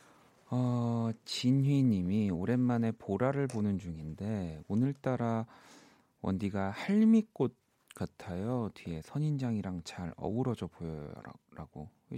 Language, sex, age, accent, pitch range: Korean, male, 40-59, native, 95-125 Hz